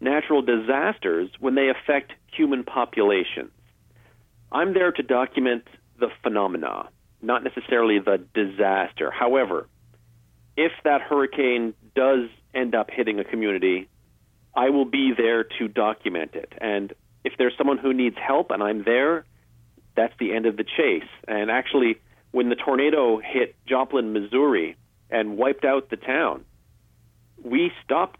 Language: English